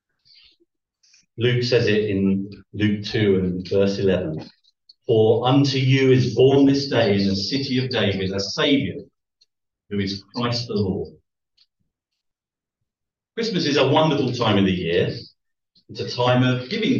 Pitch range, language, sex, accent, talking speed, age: 105-135 Hz, English, male, British, 145 wpm, 50-69